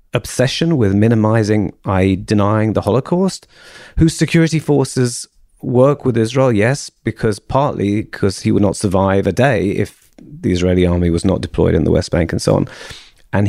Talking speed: 170 wpm